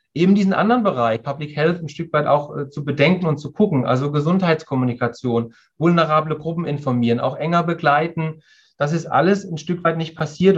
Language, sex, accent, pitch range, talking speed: German, male, German, 135-165 Hz, 180 wpm